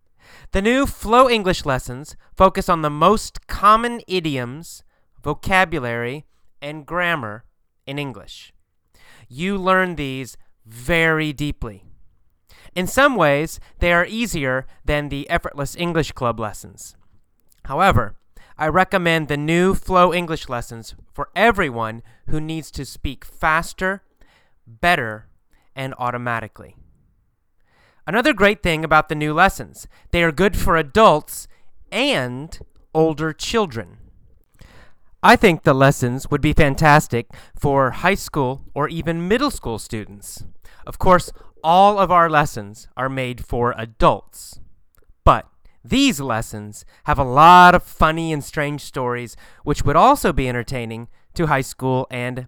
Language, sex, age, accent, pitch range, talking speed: English, male, 30-49, American, 120-175 Hz, 125 wpm